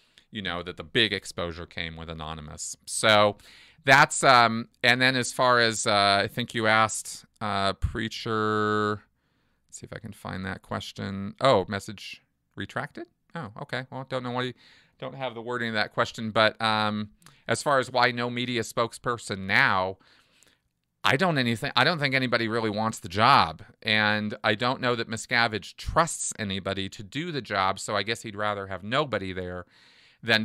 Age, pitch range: 40-59, 95-115 Hz